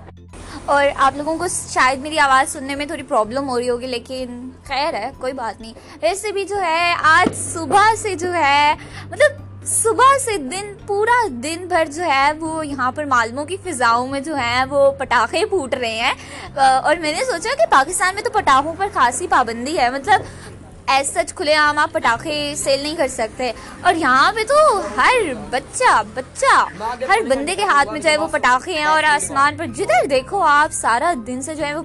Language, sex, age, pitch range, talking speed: Urdu, female, 20-39, 260-345 Hz, 195 wpm